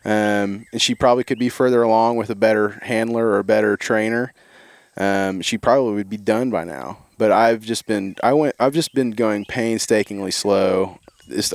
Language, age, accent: English, 20-39, American